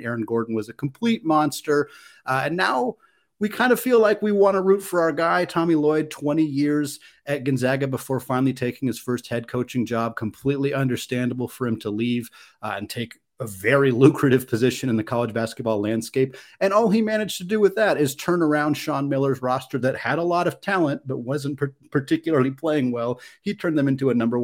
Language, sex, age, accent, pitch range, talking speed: English, male, 30-49, American, 115-150 Hz, 205 wpm